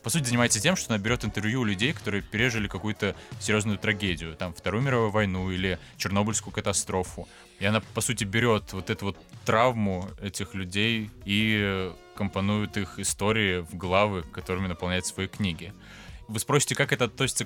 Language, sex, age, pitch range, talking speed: Russian, male, 20-39, 95-110 Hz, 165 wpm